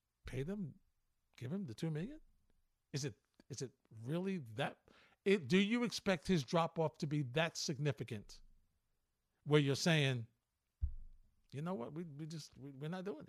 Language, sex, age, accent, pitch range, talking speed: English, male, 50-69, American, 150-200 Hz, 165 wpm